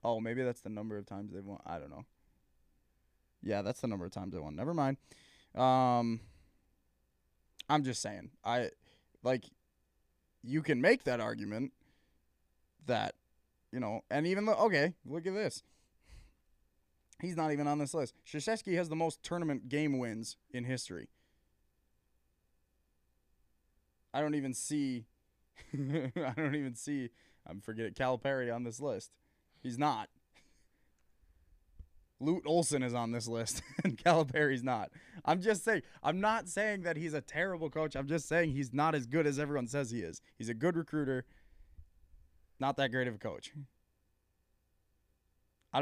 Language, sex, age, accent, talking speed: English, male, 20-39, American, 155 wpm